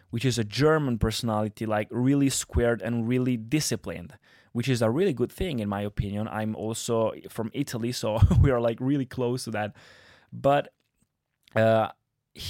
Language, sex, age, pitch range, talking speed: Italian, male, 20-39, 110-130 Hz, 165 wpm